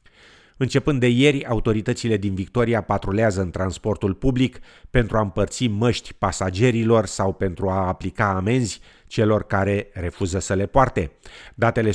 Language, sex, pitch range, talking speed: Romanian, male, 95-115 Hz, 135 wpm